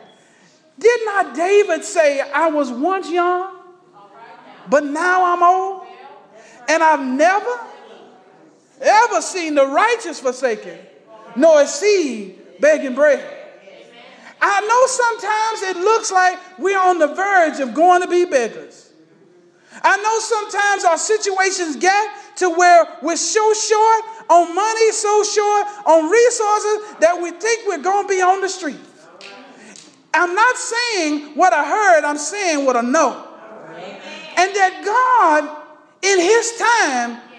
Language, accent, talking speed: English, American, 135 wpm